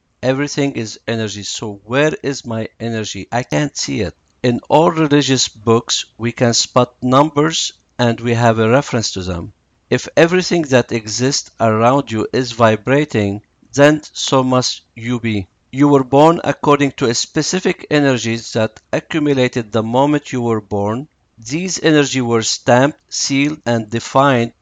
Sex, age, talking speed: male, 50-69, 150 wpm